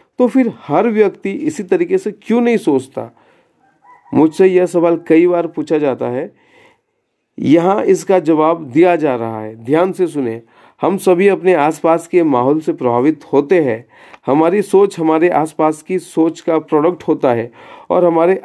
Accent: native